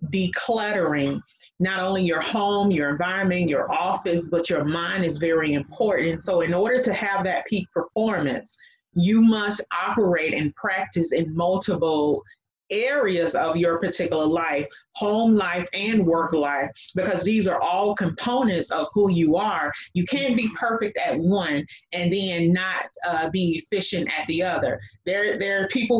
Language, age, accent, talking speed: English, 30-49, American, 155 wpm